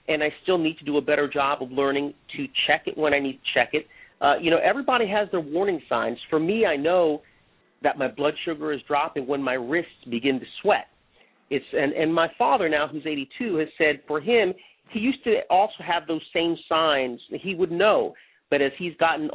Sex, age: male, 40-59